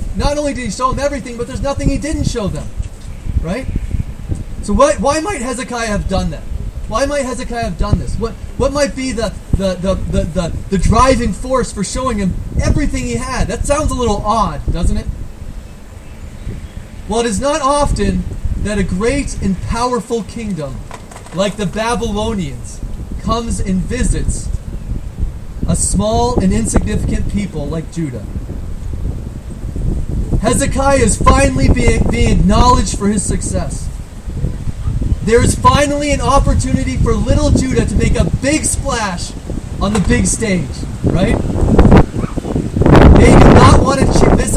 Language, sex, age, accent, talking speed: English, male, 30-49, American, 150 wpm